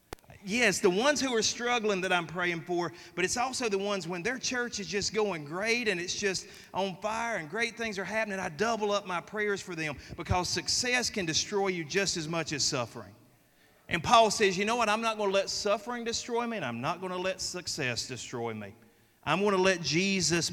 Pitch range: 150-205 Hz